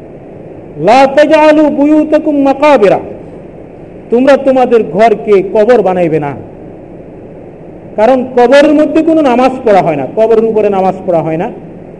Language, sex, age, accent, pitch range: Bengali, male, 50-69, native, 185-270 Hz